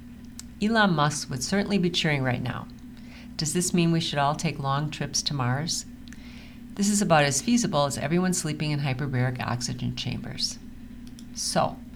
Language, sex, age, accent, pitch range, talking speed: English, female, 50-69, American, 135-200 Hz, 160 wpm